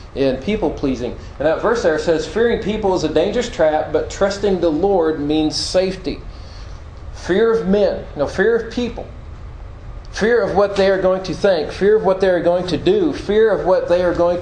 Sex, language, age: male, English, 40-59